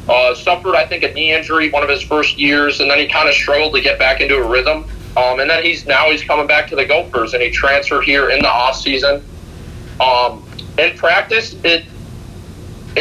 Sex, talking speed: male, 210 wpm